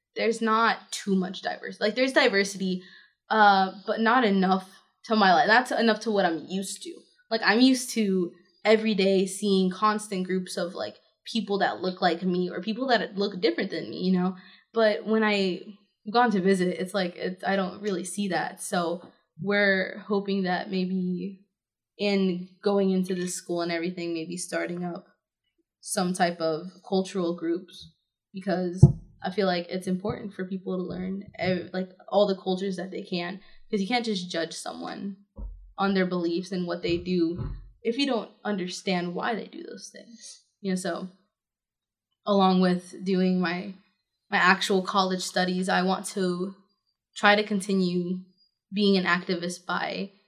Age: 20-39